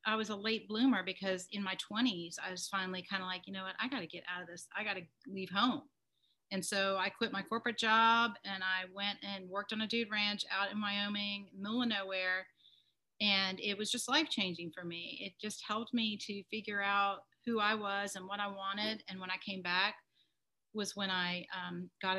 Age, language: 40-59, English